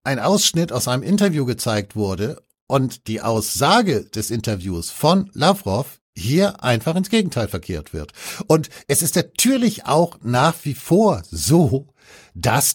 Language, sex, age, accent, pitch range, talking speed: German, male, 60-79, German, 105-145 Hz, 140 wpm